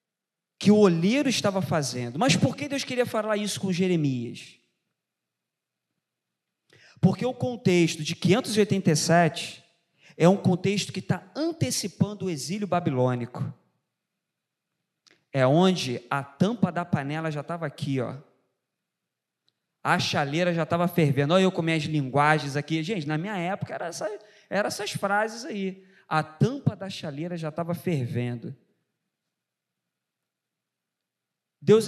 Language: Portuguese